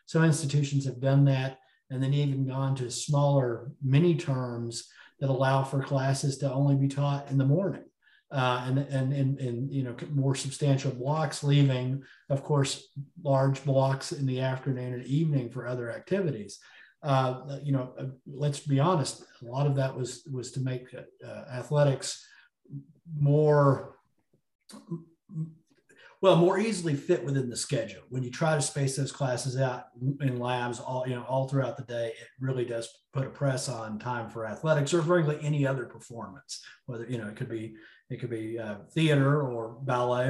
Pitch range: 125-145 Hz